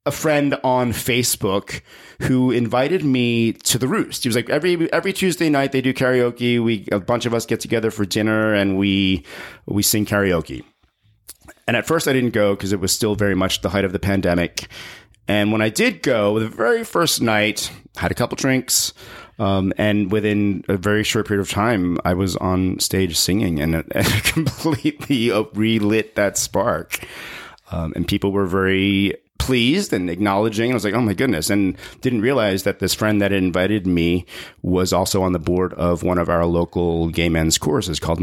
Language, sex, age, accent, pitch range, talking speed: English, male, 30-49, American, 95-115 Hz, 195 wpm